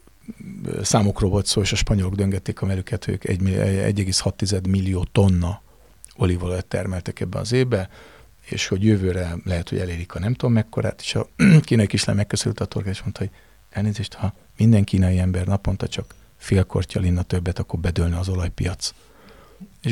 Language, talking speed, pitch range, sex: Hungarian, 155 wpm, 95-115 Hz, male